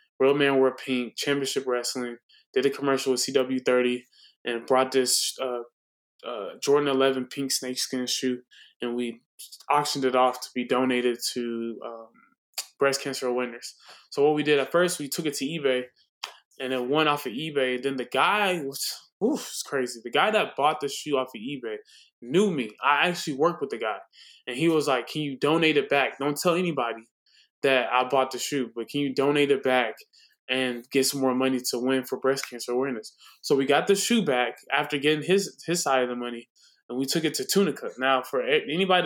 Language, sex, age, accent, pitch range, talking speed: English, male, 20-39, American, 125-150 Hz, 205 wpm